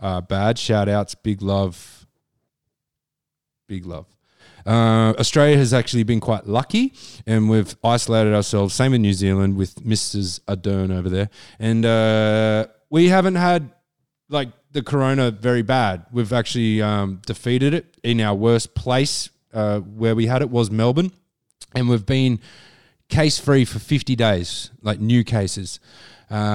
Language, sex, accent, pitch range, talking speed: English, male, Australian, 100-125 Hz, 150 wpm